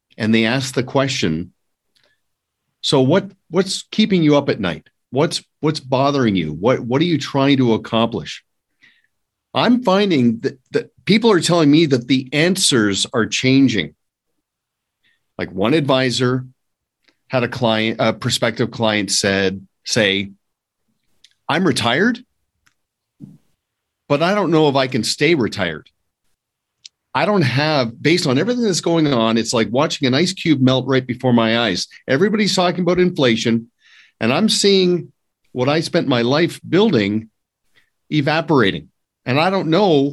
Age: 50-69